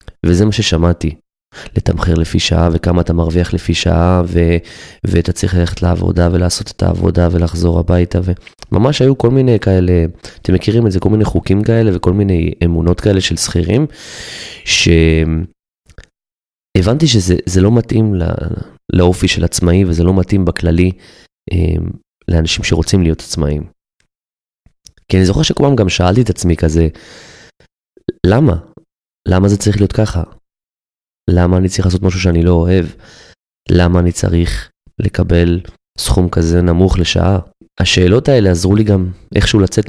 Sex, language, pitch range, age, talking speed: male, Hebrew, 85-95 Hz, 20-39, 140 wpm